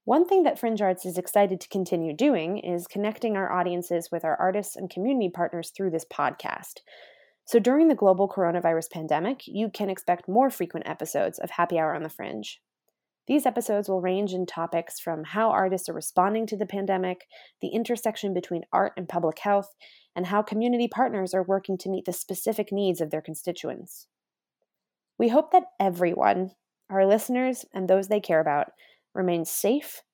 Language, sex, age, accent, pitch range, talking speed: English, female, 20-39, American, 175-225 Hz, 175 wpm